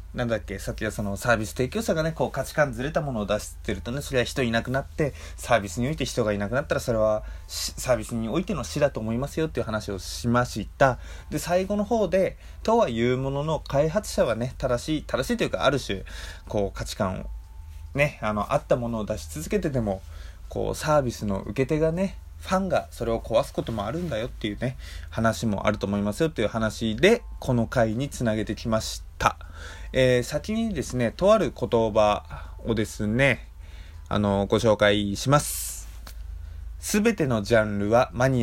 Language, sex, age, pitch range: Japanese, male, 20-39, 100-140 Hz